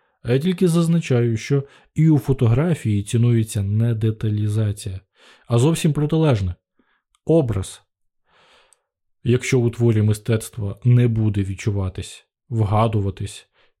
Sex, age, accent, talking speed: male, 20-39, native, 100 wpm